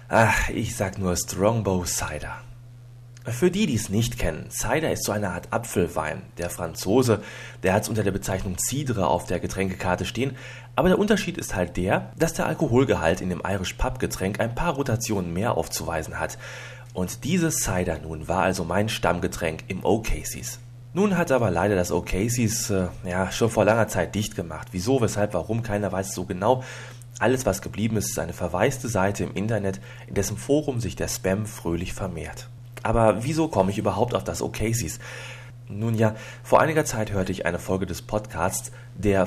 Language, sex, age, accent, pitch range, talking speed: German, male, 30-49, German, 95-125 Hz, 185 wpm